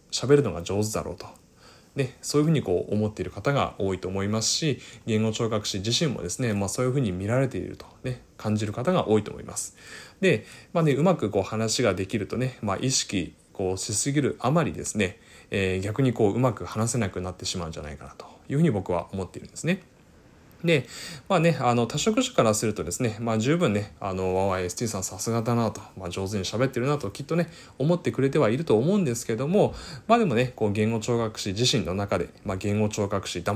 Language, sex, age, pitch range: Japanese, male, 20-39, 95-130 Hz